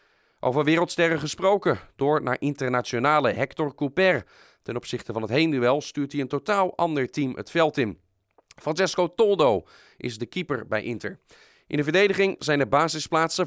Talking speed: 155 wpm